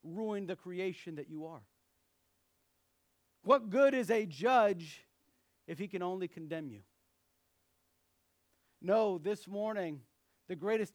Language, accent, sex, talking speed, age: English, American, male, 120 wpm, 50-69